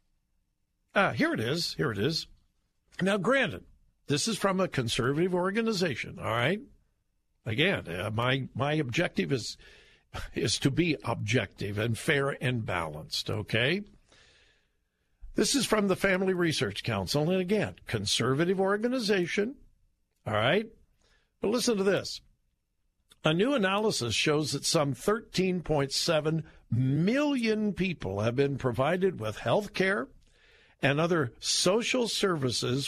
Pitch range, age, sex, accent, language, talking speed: 120-185 Hz, 60-79, male, American, English, 130 wpm